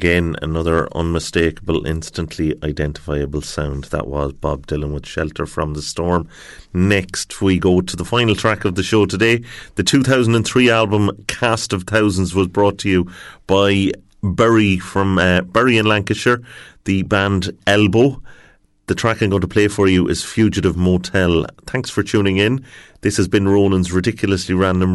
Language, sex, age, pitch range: English, male, 30-49, 90-110 Hz